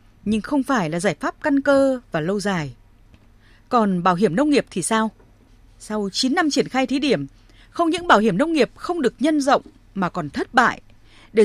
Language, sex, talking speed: Vietnamese, female, 210 wpm